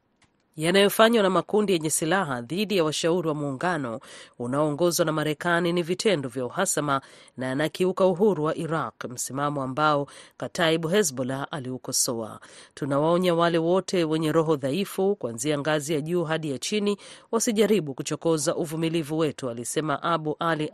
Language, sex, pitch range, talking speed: Swahili, female, 145-185 Hz, 135 wpm